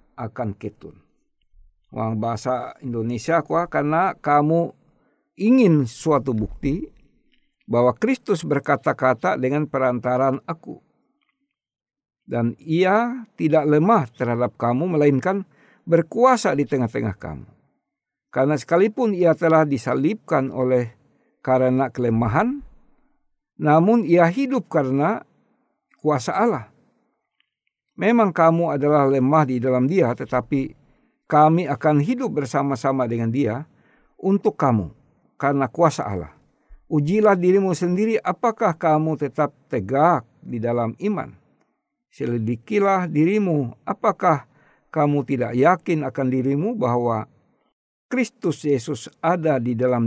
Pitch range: 125-175 Hz